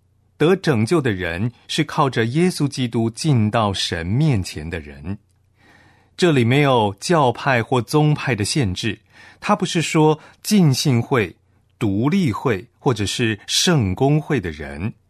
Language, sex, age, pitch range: Chinese, male, 30-49, 100-130 Hz